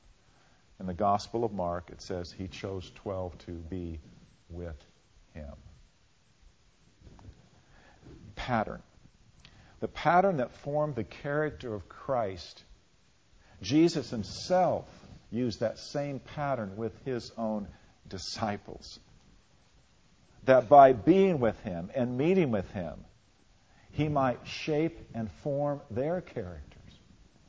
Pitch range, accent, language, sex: 90-125 Hz, American, English, male